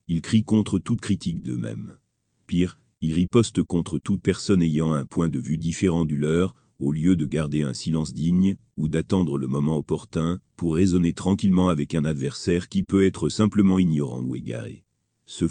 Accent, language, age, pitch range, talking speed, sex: French, French, 40-59, 75-95 Hz, 180 wpm, male